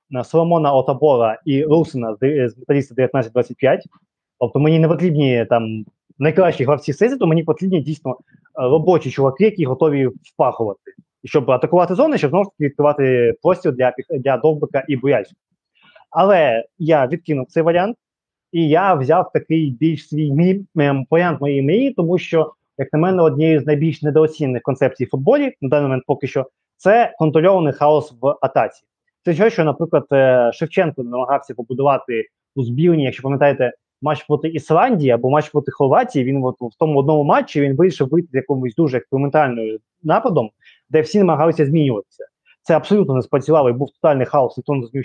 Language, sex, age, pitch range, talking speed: Ukrainian, male, 20-39, 135-160 Hz, 160 wpm